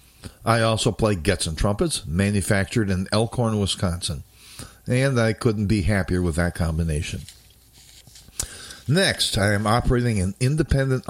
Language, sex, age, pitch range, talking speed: English, male, 50-69, 90-120 Hz, 130 wpm